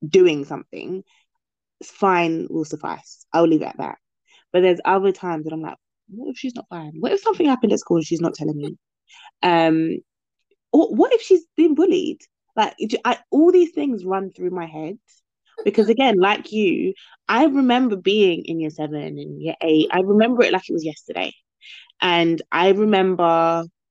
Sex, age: female, 20-39